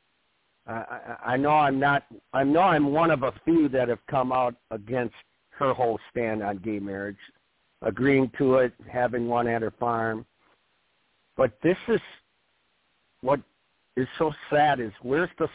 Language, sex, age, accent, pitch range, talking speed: English, male, 50-69, American, 120-150 Hz, 160 wpm